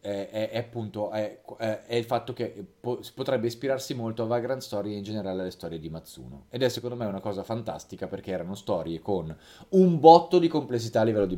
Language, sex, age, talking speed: Italian, male, 30-49, 205 wpm